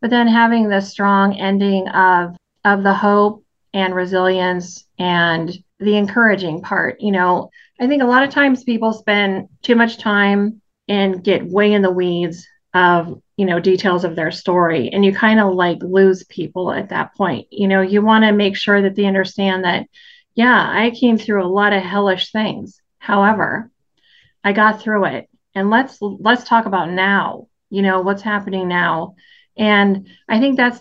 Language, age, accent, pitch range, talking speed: English, 30-49, American, 190-220 Hz, 180 wpm